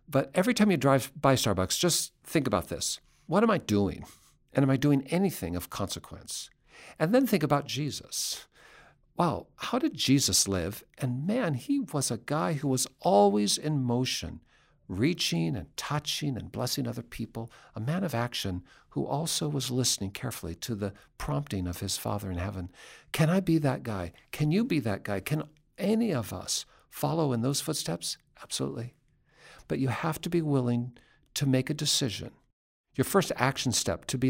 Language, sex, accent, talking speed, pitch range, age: English, male, American, 180 wpm, 105-155 Hz, 50-69